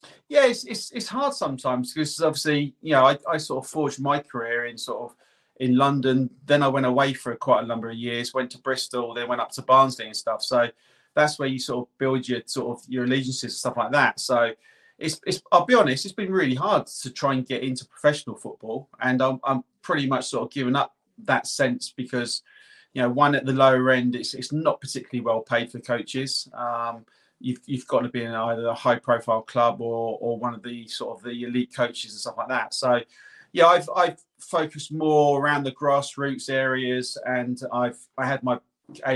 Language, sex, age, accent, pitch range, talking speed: English, male, 30-49, British, 120-135 Hz, 220 wpm